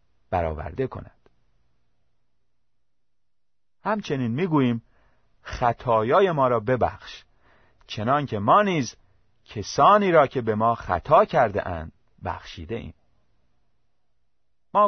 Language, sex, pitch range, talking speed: Persian, male, 90-135 Hz, 85 wpm